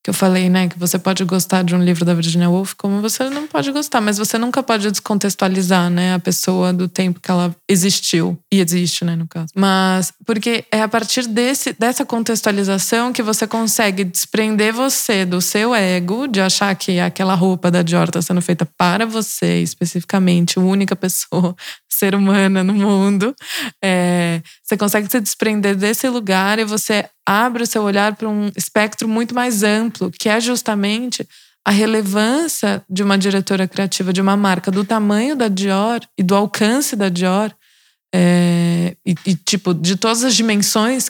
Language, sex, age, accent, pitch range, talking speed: Portuguese, female, 20-39, Brazilian, 180-215 Hz, 175 wpm